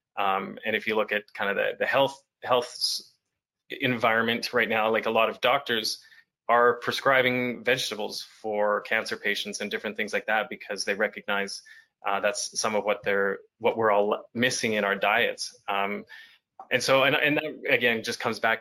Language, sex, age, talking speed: English, male, 20-39, 185 wpm